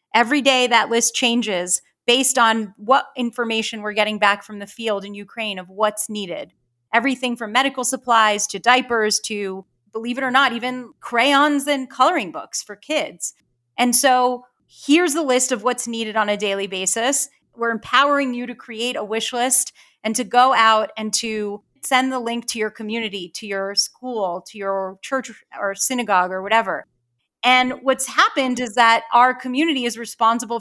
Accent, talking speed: American, 175 wpm